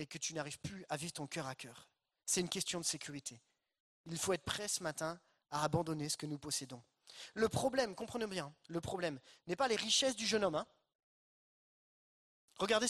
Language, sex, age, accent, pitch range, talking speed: French, male, 30-49, French, 150-220 Hz, 200 wpm